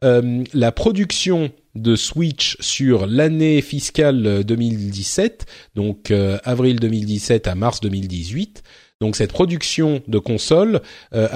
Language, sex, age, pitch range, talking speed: French, male, 30-49, 100-140 Hz, 115 wpm